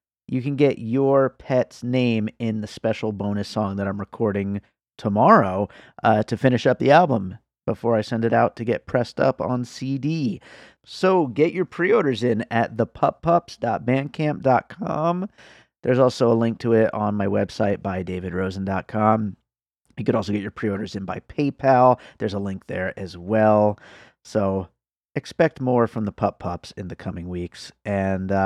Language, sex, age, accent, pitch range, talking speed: English, male, 30-49, American, 100-130 Hz, 160 wpm